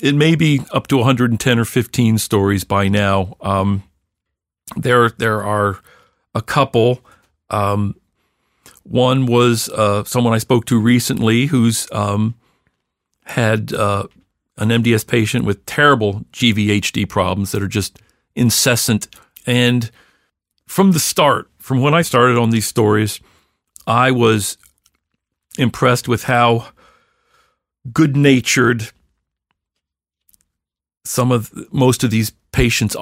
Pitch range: 100-125 Hz